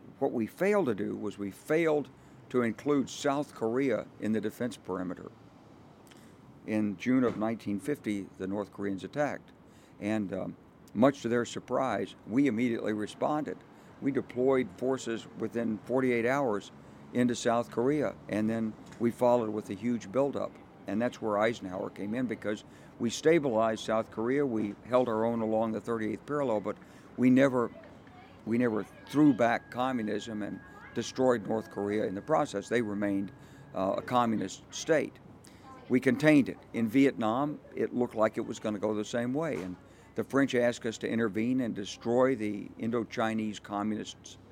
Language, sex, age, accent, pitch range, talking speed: English, male, 60-79, American, 105-125 Hz, 160 wpm